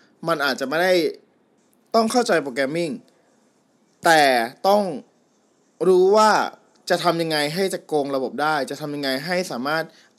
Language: Thai